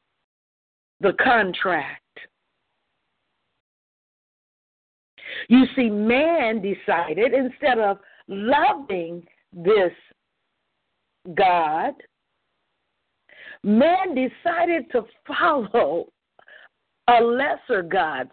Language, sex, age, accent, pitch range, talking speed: English, female, 50-69, American, 210-320 Hz, 60 wpm